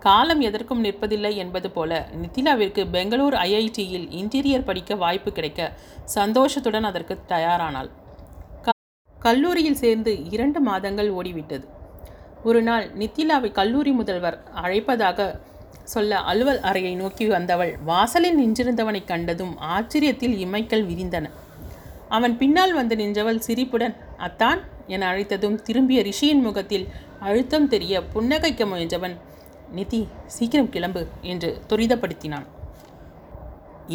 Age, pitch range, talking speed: 30-49, 180-235 Hz, 100 wpm